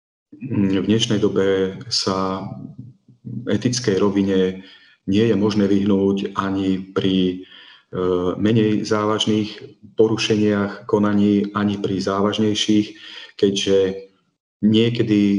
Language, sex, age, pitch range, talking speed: Slovak, male, 40-59, 95-105 Hz, 85 wpm